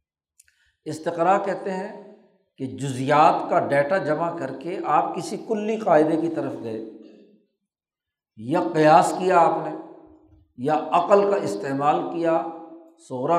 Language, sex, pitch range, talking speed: Urdu, male, 140-195 Hz, 125 wpm